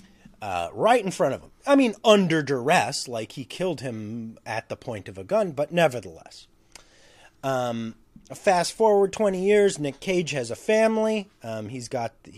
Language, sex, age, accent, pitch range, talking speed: English, male, 30-49, American, 110-160 Hz, 170 wpm